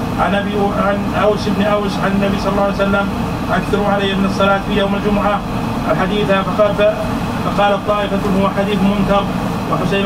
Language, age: Arabic, 30-49